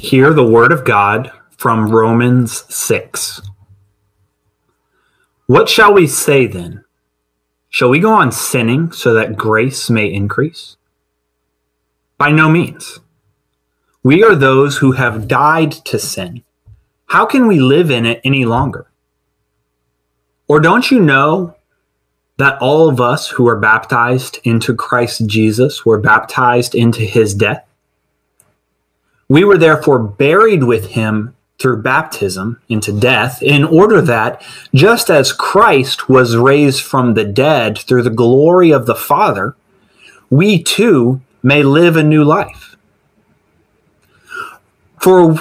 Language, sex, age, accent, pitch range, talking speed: English, male, 30-49, American, 110-150 Hz, 125 wpm